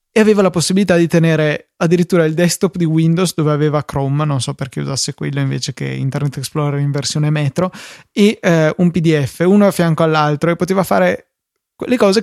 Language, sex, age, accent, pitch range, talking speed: Italian, male, 20-39, native, 150-175 Hz, 190 wpm